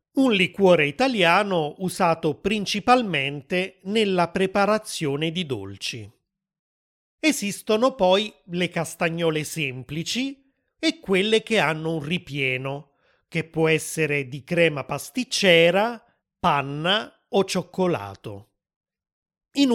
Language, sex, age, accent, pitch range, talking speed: Italian, male, 30-49, native, 150-200 Hz, 90 wpm